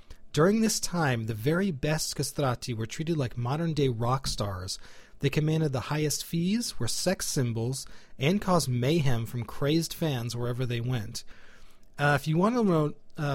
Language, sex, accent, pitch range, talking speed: English, male, American, 125-160 Hz, 160 wpm